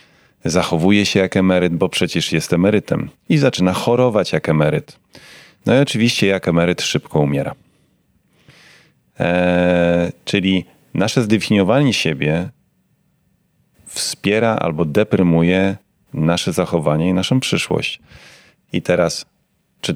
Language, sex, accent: Polish, male, native